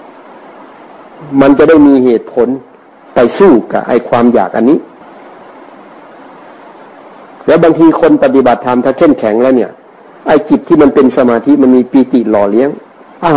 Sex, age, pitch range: male, 60-79, 125-150 Hz